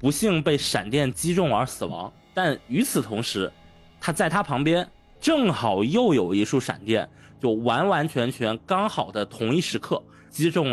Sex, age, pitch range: male, 20-39, 105-150 Hz